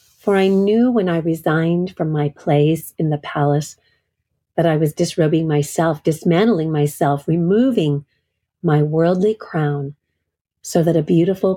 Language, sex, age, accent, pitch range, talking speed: English, female, 40-59, American, 150-185 Hz, 140 wpm